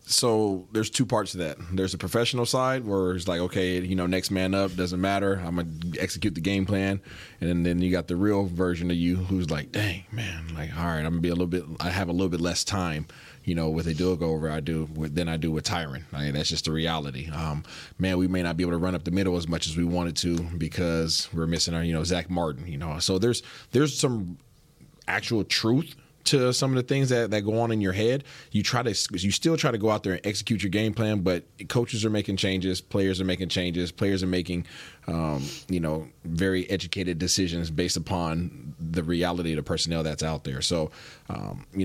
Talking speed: 245 wpm